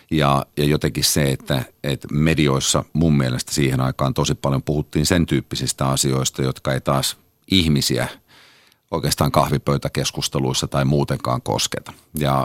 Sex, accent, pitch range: male, native, 65-80 Hz